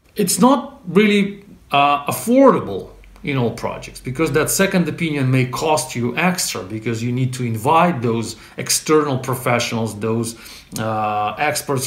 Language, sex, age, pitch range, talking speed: English, male, 40-59, 120-170 Hz, 135 wpm